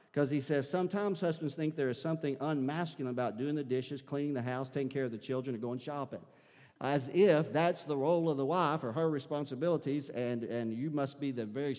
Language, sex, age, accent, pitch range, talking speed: English, male, 50-69, American, 125-165 Hz, 220 wpm